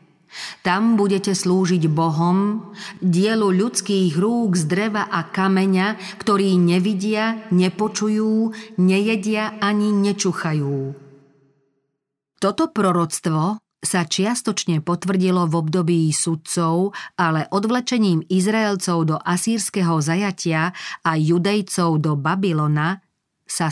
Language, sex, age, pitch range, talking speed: Slovak, female, 40-59, 165-205 Hz, 90 wpm